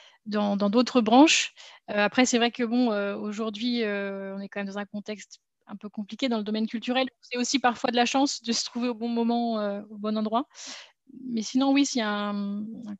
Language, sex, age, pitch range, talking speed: French, female, 20-39, 215-260 Hz, 235 wpm